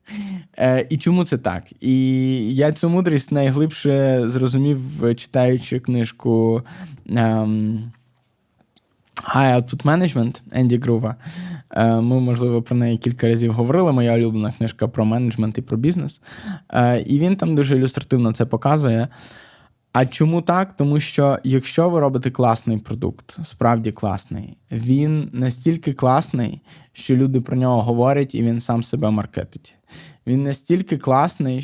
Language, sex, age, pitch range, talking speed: Ukrainian, male, 20-39, 120-150 Hz, 125 wpm